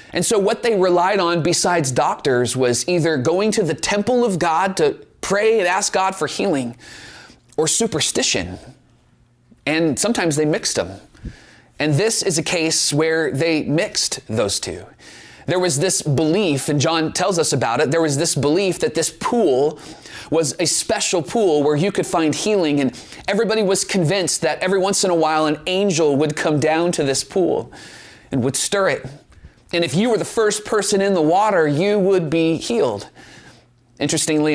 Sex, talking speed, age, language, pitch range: male, 180 wpm, 30-49, English, 130-175 Hz